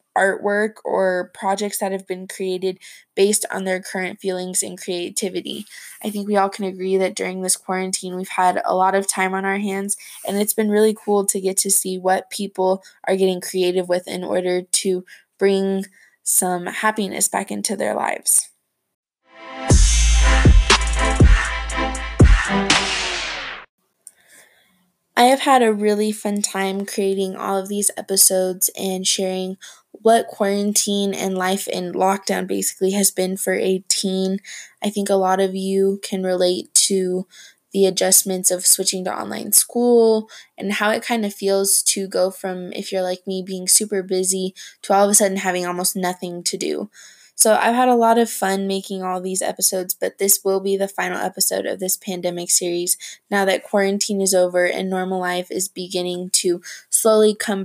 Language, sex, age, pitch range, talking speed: English, female, 20-39, 185-200 Hz, 170 wpm